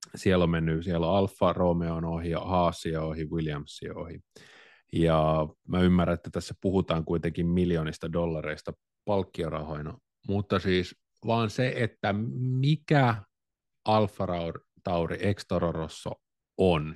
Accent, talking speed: native, 115 wpm